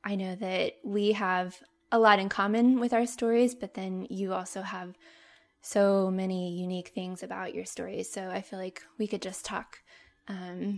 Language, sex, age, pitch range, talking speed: English, female, 20-39, 185-215 Hz, 185 wpm